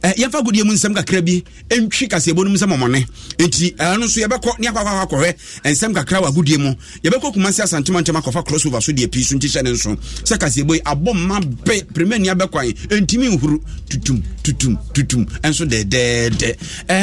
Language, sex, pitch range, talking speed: English, male, 135-190 Hz, 35 wpm